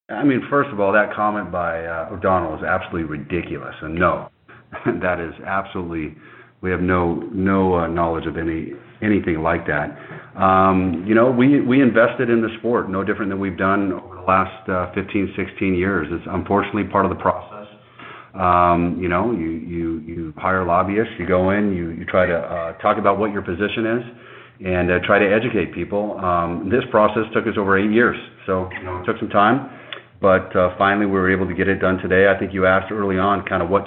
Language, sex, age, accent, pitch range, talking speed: English, male, 40-59, American, 90-100 Hz, 210 wpm